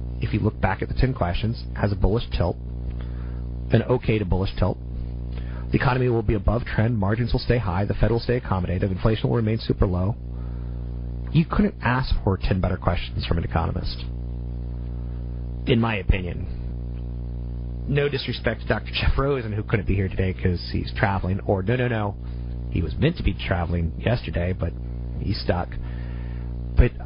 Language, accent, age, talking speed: English, American, 40-59, 175 wpm